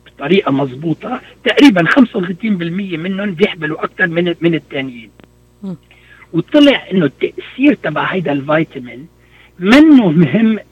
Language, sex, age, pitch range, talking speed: Arabic, male, 60-79, 145-205 Hz, 100 wpm